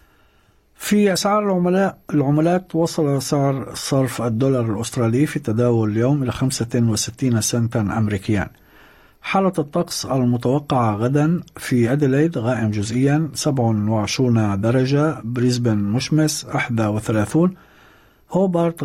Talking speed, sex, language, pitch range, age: 105 wpm, male, Arabic, 115-150 Hz, 50-69